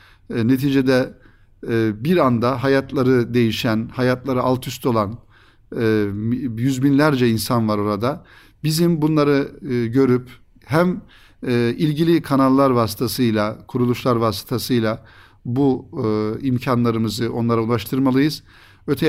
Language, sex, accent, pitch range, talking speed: Turkish, male, native, 115-135 Hz, 100 wpm